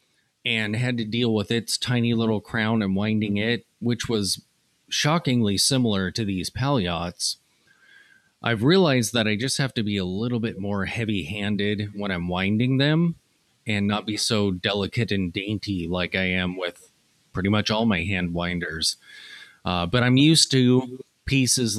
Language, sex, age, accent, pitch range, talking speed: English, male, 30-49, American, 100-125 Hz, 160 wpm